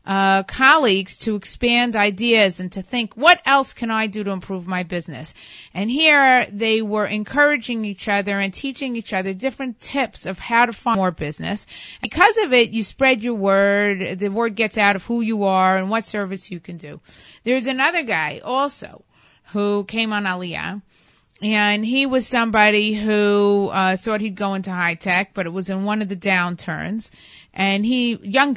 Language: English